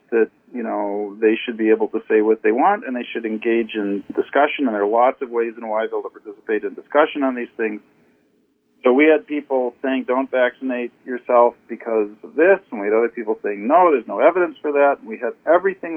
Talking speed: 225 wpm